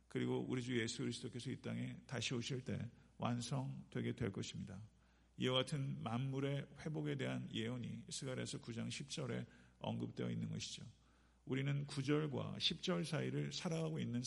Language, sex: Korean, male